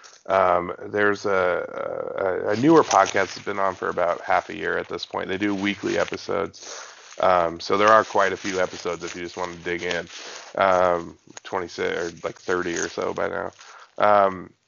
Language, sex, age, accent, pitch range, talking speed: English, male, 20-39, American, 90-115 Hz, 195 wpm